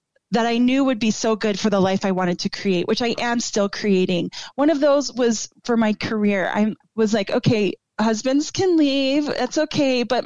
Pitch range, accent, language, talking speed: 195-245 Hz, American, English, 210 wpm